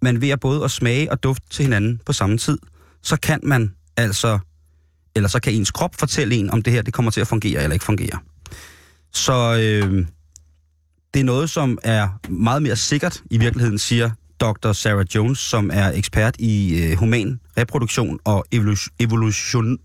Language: Danish